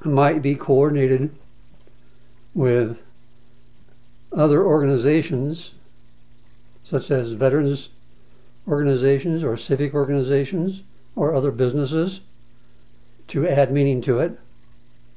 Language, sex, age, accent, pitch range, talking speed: English, male, 60-79, American, 120-145 Hz, 85 wpm